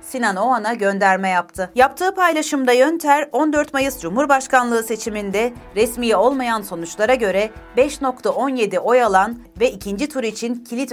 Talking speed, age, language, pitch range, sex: 125 wpm, 40-59, Turkish, 190-250 Hz, female